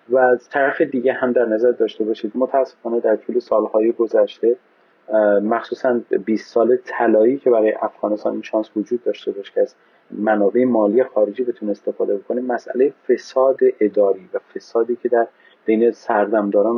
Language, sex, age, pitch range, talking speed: Persian, male, 30-49, 100-125 Hz, 155 wpm